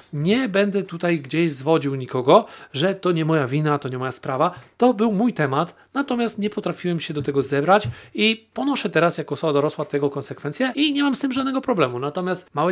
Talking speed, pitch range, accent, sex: 205 wpm, 140-180 Hz, native, male